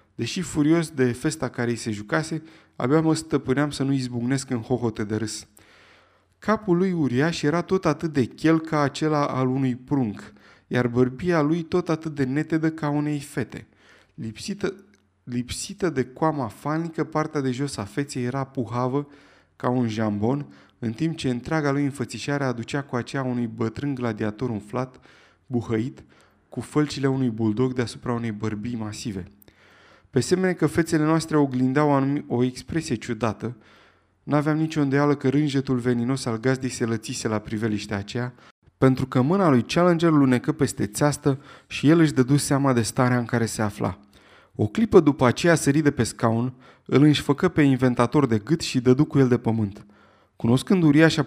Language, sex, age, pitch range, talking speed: Romanian, male, 20-39, 115-150 Hz, 165 wpm